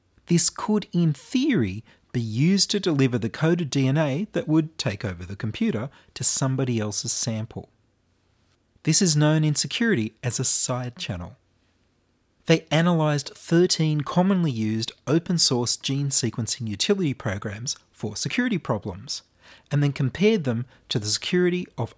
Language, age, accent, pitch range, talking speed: English, 30-49, Australian, 110-150 Hz, 140 wpm